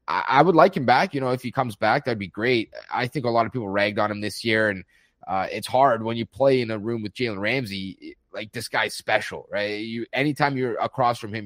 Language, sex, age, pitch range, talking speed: English, male, 30-49, 100-130 Hz, 255 wpm